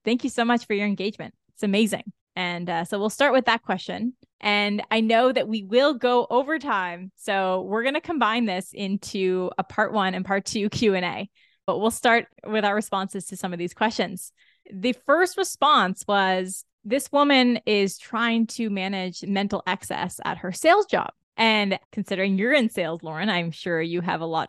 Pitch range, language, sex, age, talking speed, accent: 185-230 Hz, English, female, 20-39, 195 wpm, American